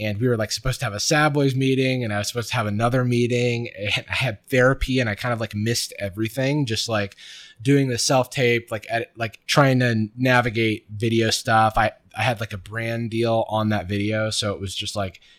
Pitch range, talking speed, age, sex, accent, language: 100-125 Hz, 220 wpm, 20-39, male, American, English